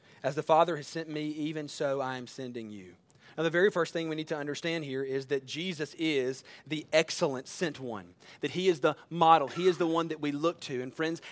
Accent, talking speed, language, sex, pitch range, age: American, 240 wpm, English, male, 155-190 Hz, 30-49